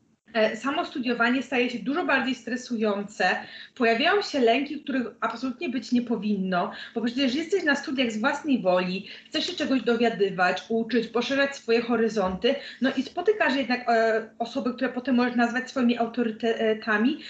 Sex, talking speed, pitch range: female, 145 wpm, 230-275 Hz